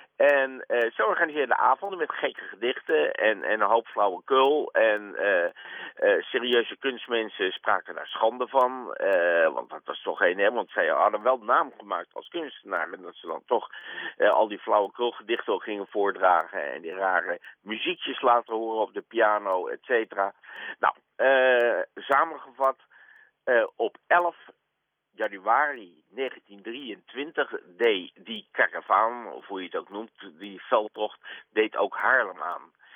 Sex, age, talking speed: male, 50-69, 155 wpm